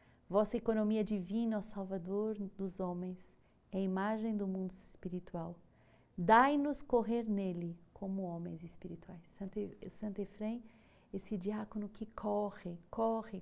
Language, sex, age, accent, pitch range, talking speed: Portuguese, female, 40-59, Brazilian, 185-215 Hz, 115 wpm